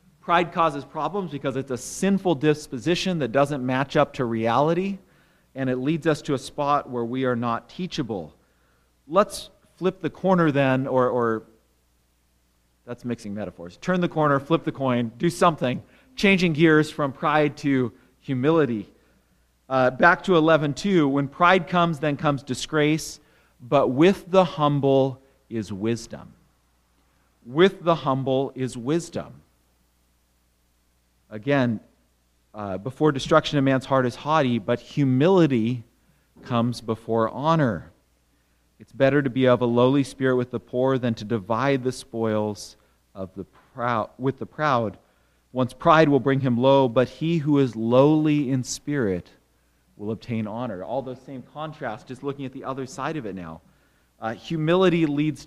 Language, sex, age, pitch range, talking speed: English, male, 40-59, 110-150 Hz, 150 wpm